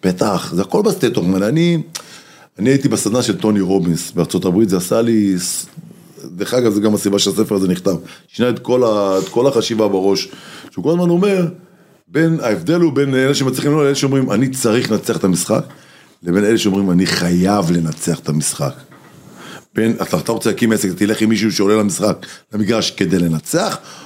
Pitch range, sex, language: 100-135 Hz, male, English